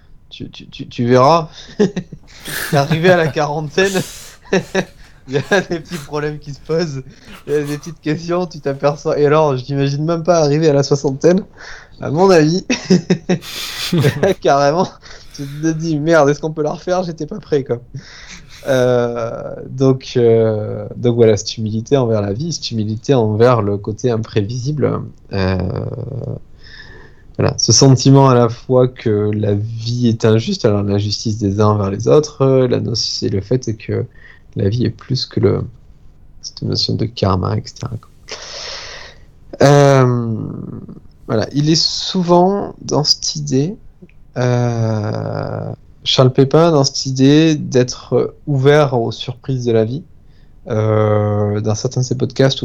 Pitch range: 115-150 Hz